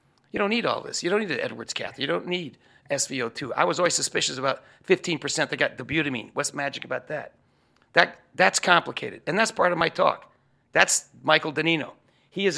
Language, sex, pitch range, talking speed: English, male, 140-160 Hz, 205 wpm